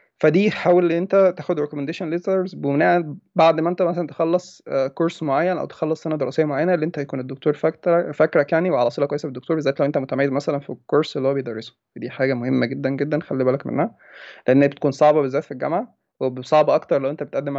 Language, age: Arabic, 20-39